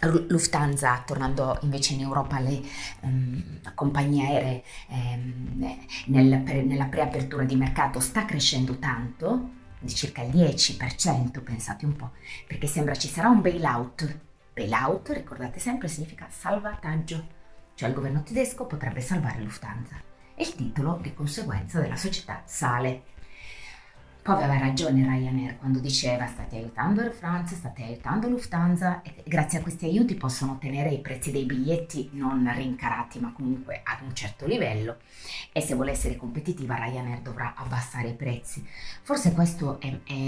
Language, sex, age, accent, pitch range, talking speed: Italian, female, 30-49, native, 125-150 Hz, 145 wpm